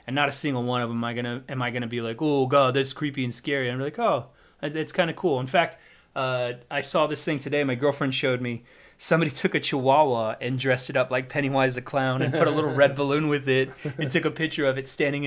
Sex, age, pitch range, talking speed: male, 30-49, 125-160 Hz, 265 wpm